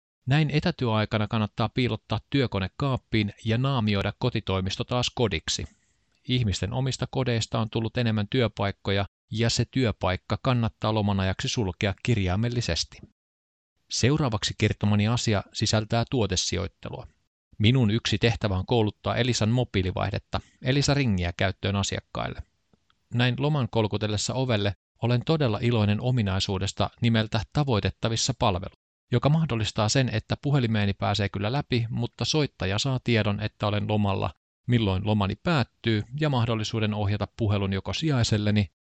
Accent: native